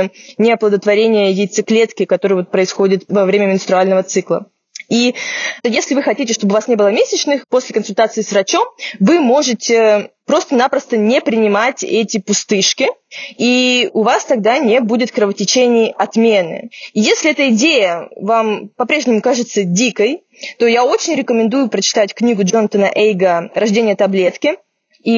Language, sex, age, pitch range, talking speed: Russian, female, 20-39, 205-250 Hz, 130 wpm